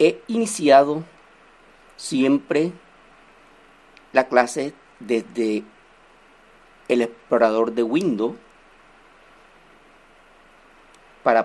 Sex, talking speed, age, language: male, 60 wpm, 50-69, Spanish